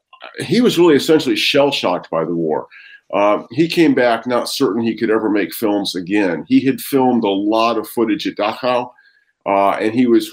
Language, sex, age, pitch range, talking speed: English, male, 50-69, 115-150 Hz, 190 wpm